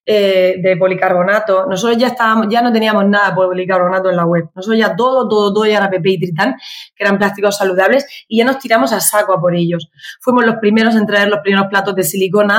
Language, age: Spanish, 20-39